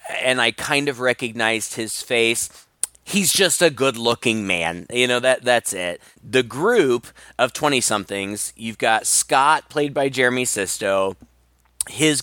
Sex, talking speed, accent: male, 150 wpm, American